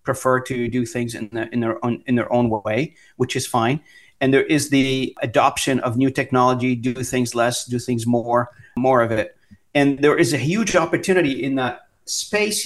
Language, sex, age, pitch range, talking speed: English, male, 40-59, 120-140 Hz, 200 wpm